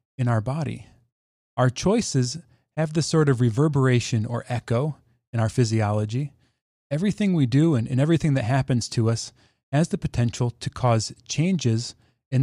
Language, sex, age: English, male, 30-49